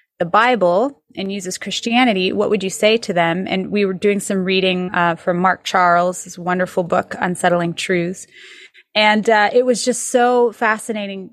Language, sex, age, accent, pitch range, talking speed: English, female, 30-49, American, 190-235 Hz, 170 wpm